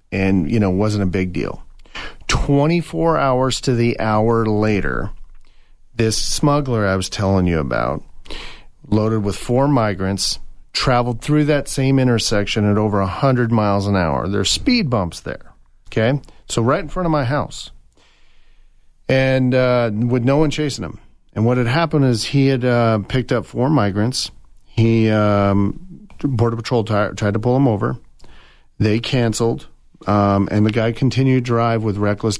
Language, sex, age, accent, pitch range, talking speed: English, male, 40-59, American, 100-125 Hz, 165 wpm